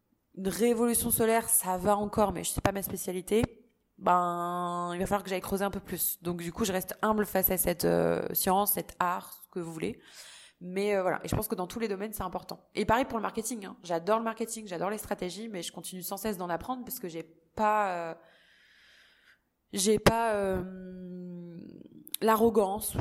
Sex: female